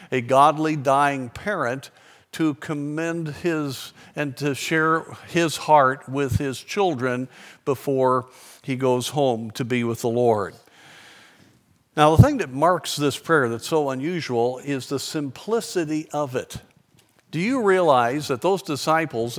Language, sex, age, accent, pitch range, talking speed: English, male, 50-69, American, 125-150 Hz, 140 wpm